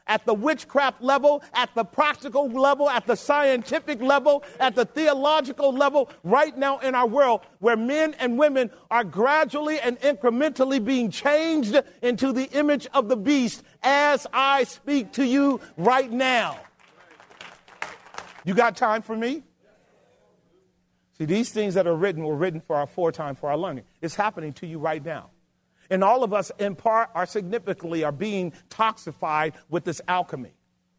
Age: 40-59